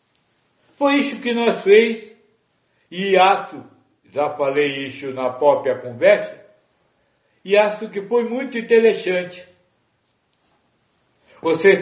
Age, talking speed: 60-79, 100 wpm